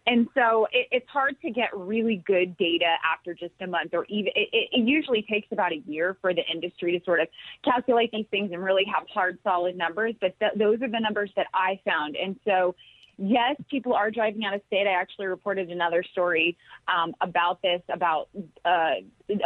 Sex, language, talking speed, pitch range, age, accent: female, English, 195 wpm, 185-225 Hz, 30-49, American